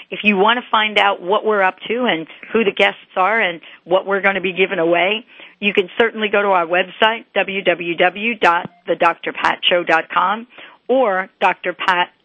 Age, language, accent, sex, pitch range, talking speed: 50-69, English, American, female, 180-220 Hz, 160 wpm